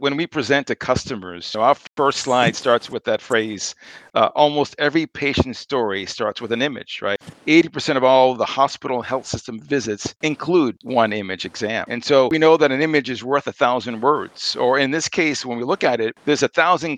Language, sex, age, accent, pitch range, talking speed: English, male, 40-59, American, 120-150 Hz, 210 wpm